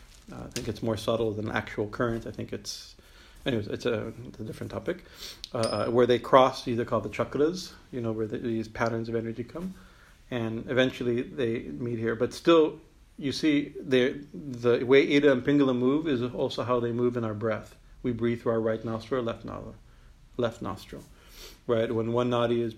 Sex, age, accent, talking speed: male, 50-69, American, 205 wpm